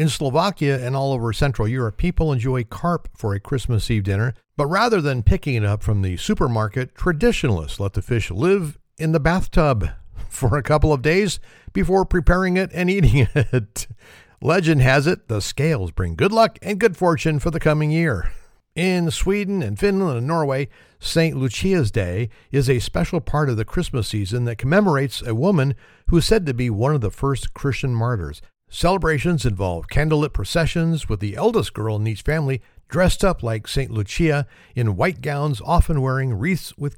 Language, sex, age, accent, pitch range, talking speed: English, male, 50-69, American, 110-160 Hz, 185 wpm